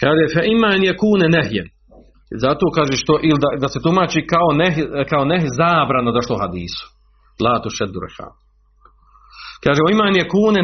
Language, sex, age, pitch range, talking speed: Croatian, male, 40-59, 115-170 Hz, 160 wpm